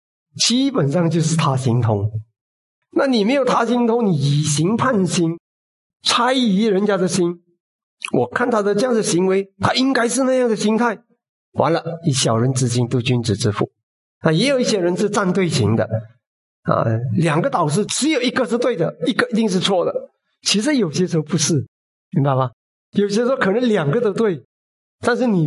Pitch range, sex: 125-205 Hz, male